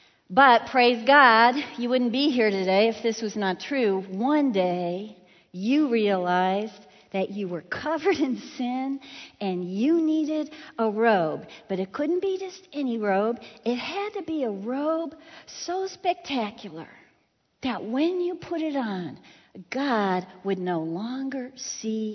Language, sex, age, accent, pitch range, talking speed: English, female, 50-69, American, 200-295 Hz, 145 wpm